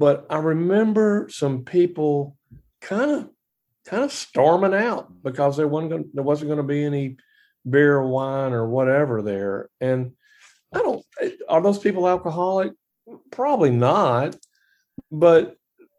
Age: 50-69